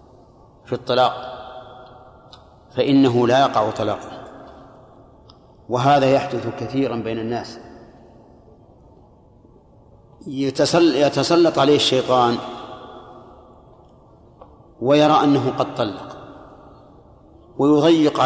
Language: Arabic